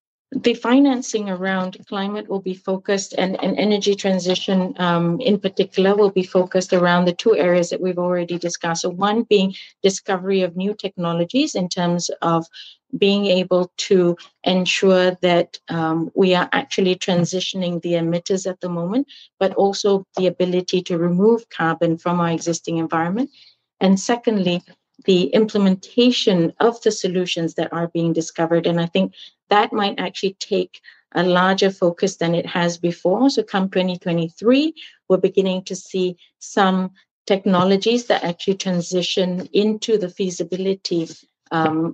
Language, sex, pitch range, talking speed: English, female, 170-195 Hz, 145 wpm